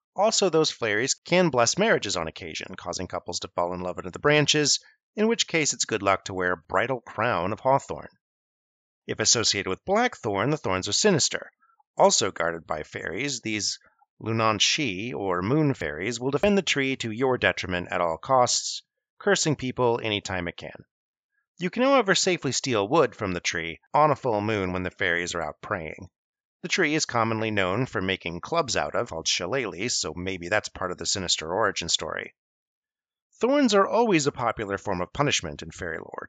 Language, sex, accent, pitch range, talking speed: English, male, American, 95-155 Hz, 190 wpm